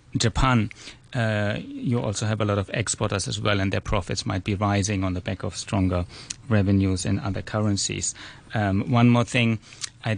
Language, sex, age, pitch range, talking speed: English, male, 30-49, 105-120 Hz, 185 wpm